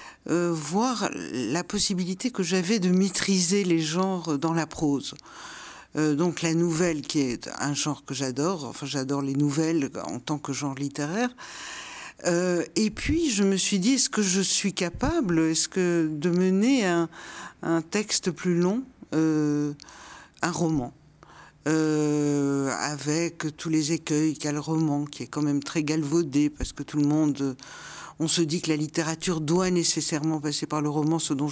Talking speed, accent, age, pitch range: 170 wpm, French, 50-69, 150-180 Hz